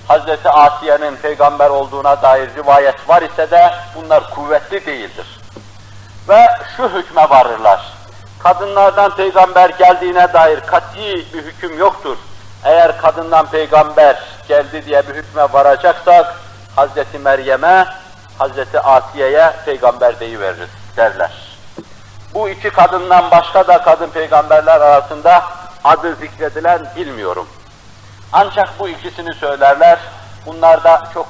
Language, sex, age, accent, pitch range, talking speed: Turkish, male, 60-79, native, 130-175 Hz, 110 wpm